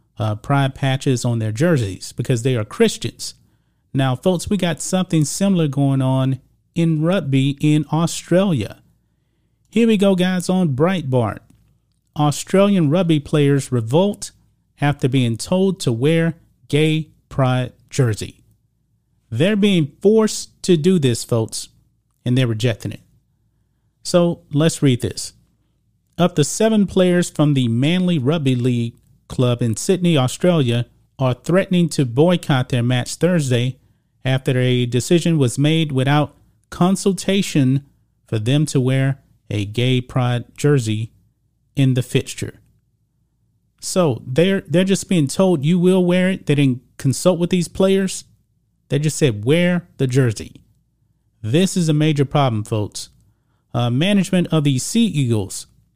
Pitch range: 120-170 Hz